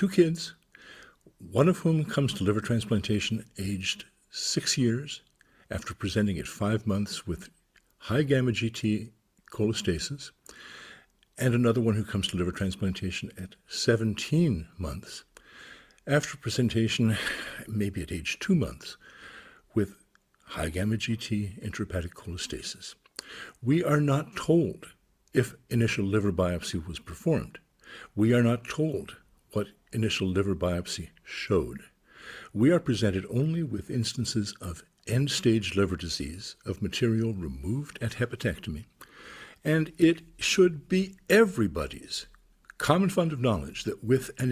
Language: English